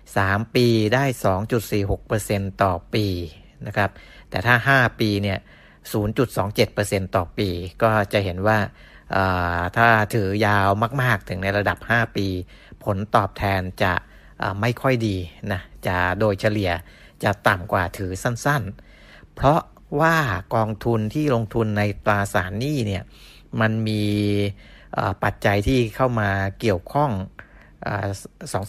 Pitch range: 100-120 Hz